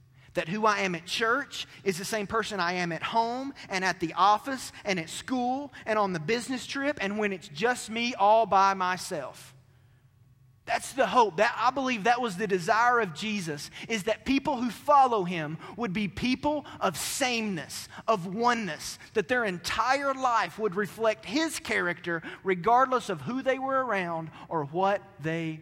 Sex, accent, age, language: male, American, 30-49, English